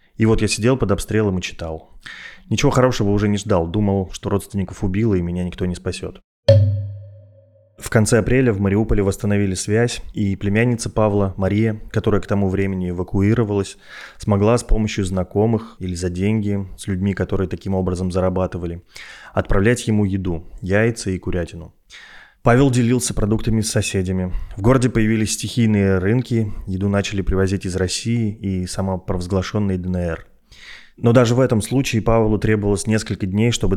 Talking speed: 150 wpm